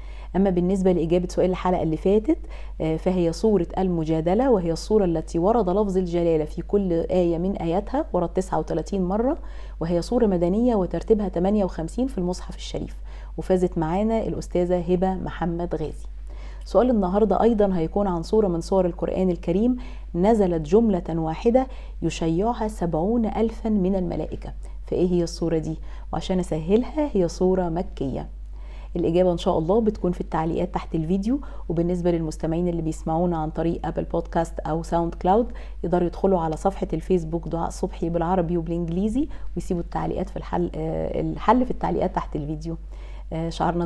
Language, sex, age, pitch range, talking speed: English, female, 40-59, 160-190 Hz, 140 wpm